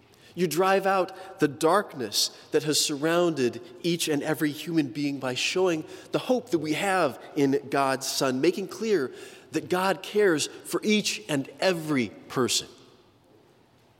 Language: English